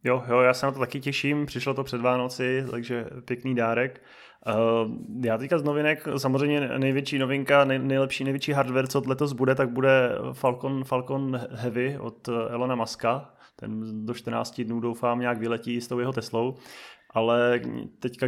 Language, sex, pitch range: Czech, male, 120-130 Hz